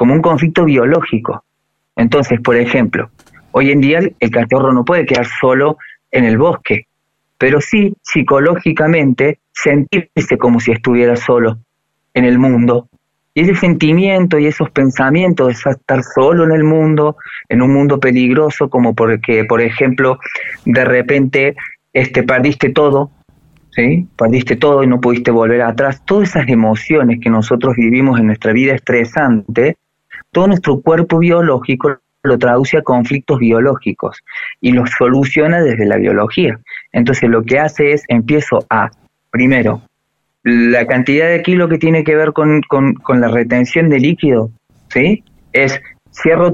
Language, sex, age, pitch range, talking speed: Spanish, male, 30-49, 125-155 Hz, 150 wpm